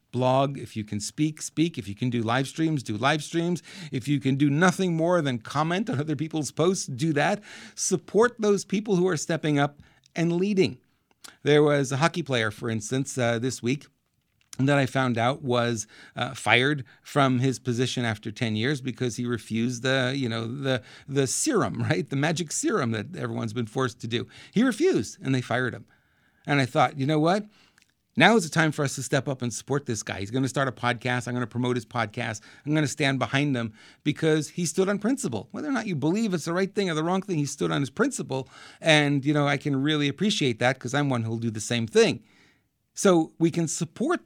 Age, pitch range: 40-59, 120-165 Hz